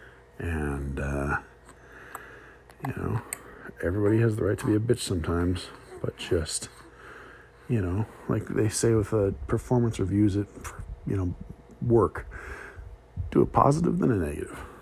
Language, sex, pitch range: English, male, 85-115 Hz